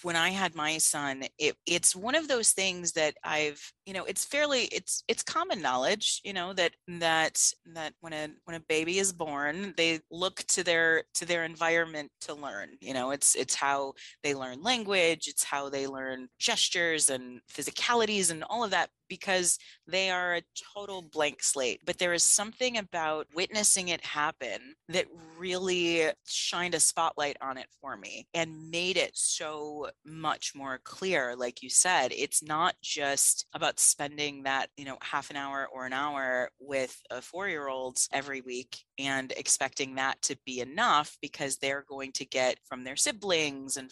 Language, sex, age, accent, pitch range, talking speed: English, female, 30-49, American, 135-180 Hz, 175 wpm